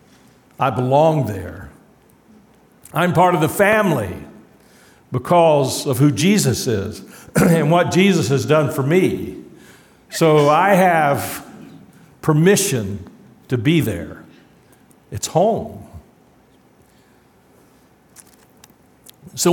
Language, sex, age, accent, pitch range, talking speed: English, male, 60-79, American, 135-170 Hz, 90 wpm